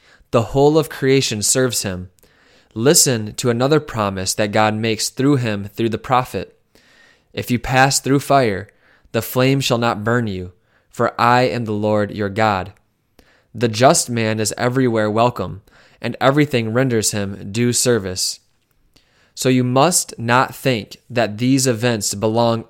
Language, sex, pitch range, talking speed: English, male, 110-130 Hz, 150 wpm